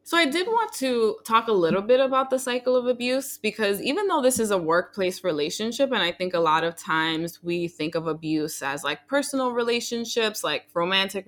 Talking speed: 205 wpm